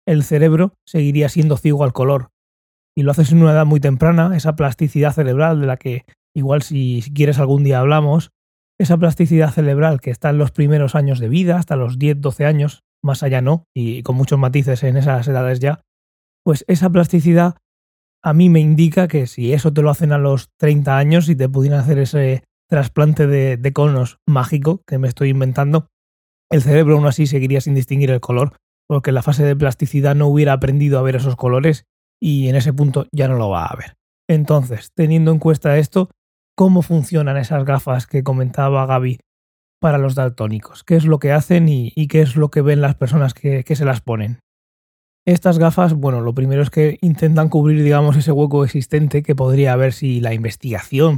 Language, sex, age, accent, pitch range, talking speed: Spanish, male, 20-39, Spanish, 130-155 Hz, 200 wpm